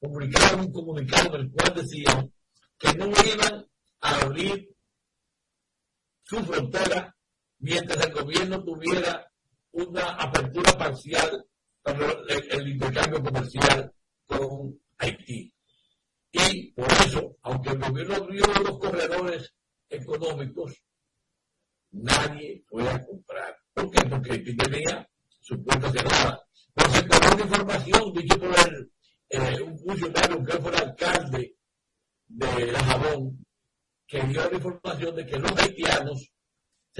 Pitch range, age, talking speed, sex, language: 135-180 Hz, 60-79, 115 wpm, male, Spanish